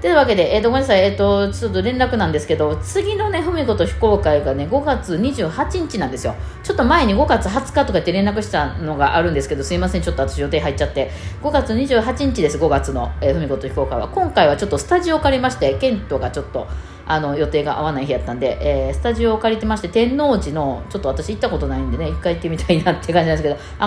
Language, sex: Japanese, female